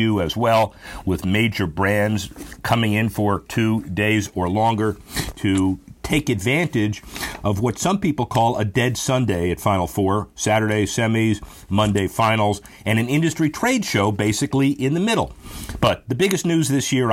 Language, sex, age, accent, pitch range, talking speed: English, male, 50-69, American, 100-130 Hz, 160 wpm